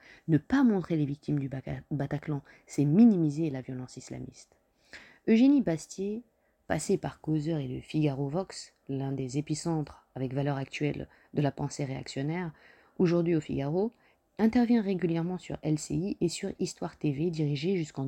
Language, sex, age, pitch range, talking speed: French, female, 20-39, 145-180 Hz, 145 wpm